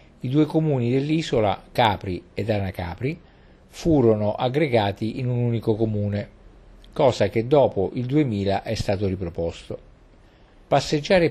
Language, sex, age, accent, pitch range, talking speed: Italian, male, 50-69, native, 100-135 Hz, 115 wpm